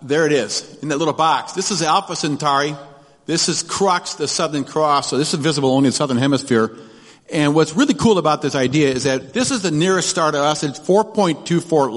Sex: male